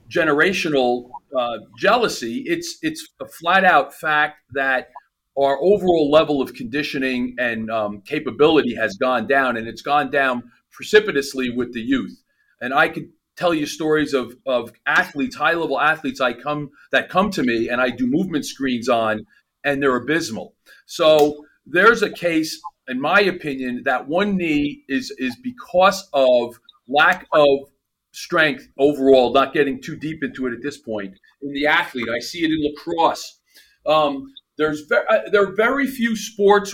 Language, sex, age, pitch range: English, male, 40-59, 135-185 Hz